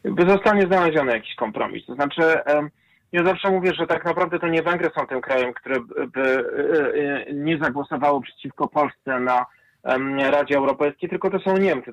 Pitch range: 140-160 Hz